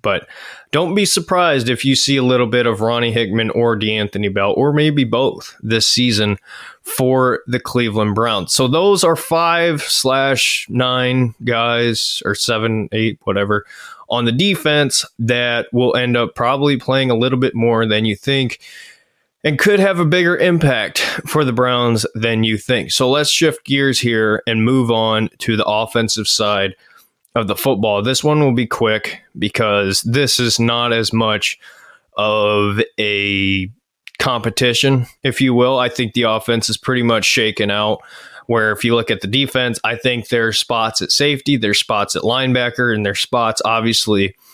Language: English